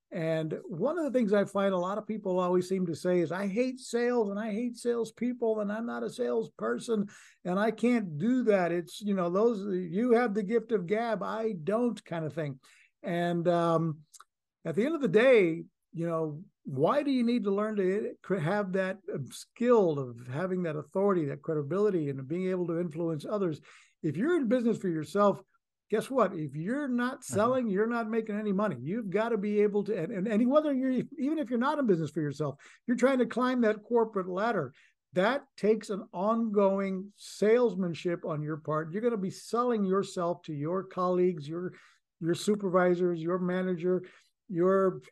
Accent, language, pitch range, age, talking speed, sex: American, English, 170-220 Hz, 60-79, 195 wpm, male